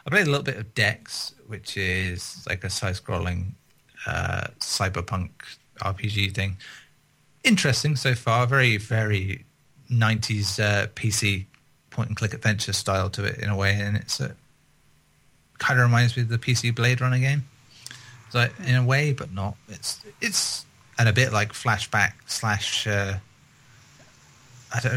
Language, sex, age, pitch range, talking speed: English, male, 30-49, 105-130 Hz, 145 wpm